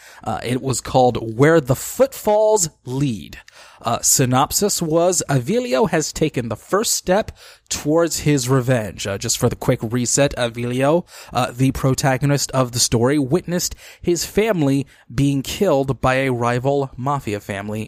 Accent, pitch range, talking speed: American, 115-160 Hz, 145 wpm